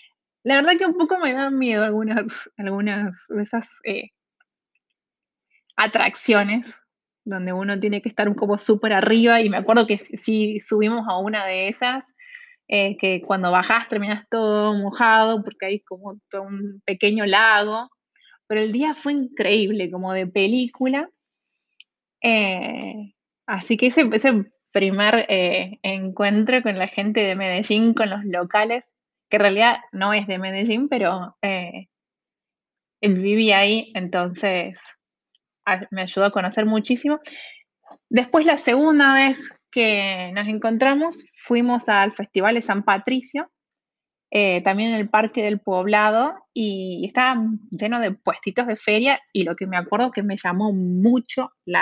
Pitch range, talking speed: 200-245 Hz, 150 wpm